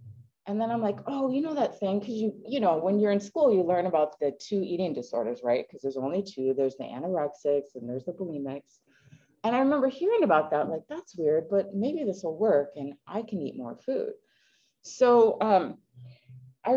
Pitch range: 140-210 Hz